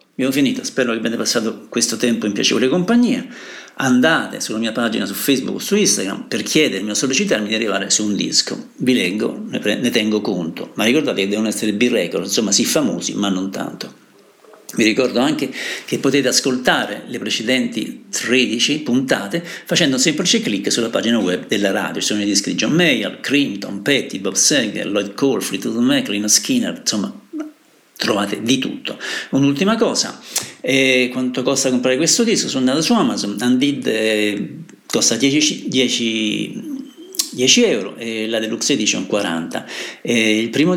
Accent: native